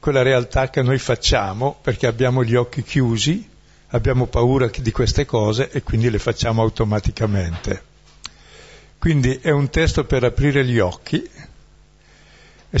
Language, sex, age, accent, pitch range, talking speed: Italian, male, 60-79, native, 105-130 Hz, 135 wpm